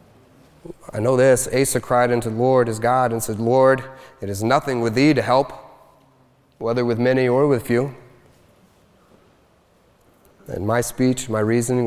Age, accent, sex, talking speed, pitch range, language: 30-49, American, male, 155 wpm, 110-145 Hz, English